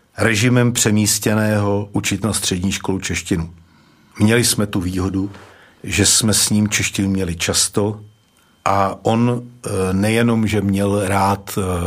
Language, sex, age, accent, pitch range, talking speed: Czech, male, 50-69, native, 95-110 Hz, 120 wpm